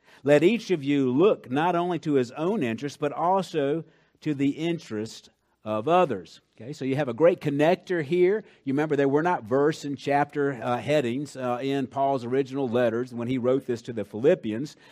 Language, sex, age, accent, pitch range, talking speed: English, male, 50-69, American, 130-165 Hz, 195 wpm